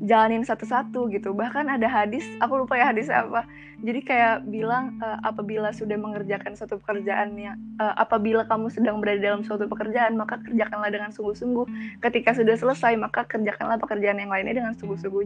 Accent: native